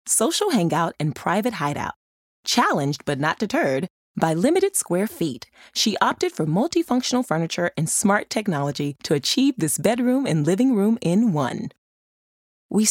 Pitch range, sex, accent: 165-245 Hz, female, American